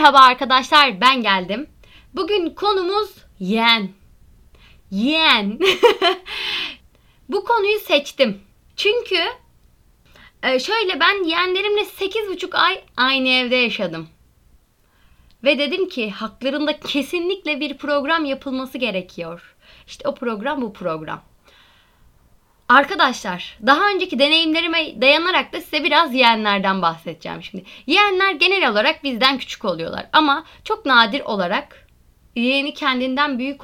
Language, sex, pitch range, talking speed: Turkish, female, 215-320 Hz, 105 wpm